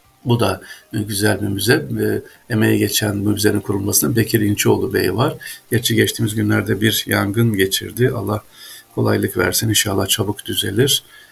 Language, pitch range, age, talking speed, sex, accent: Turkish, 105-125 Hz, 50-69, 120 wpm, male, native